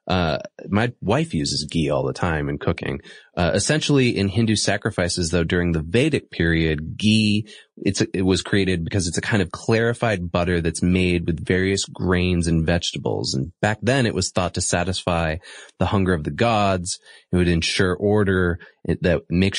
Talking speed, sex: 185 wpm, male